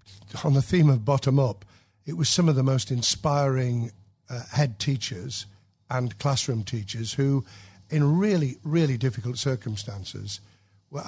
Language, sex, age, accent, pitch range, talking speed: English, male, 60-79, British, 110-145 Hz, 140 wpm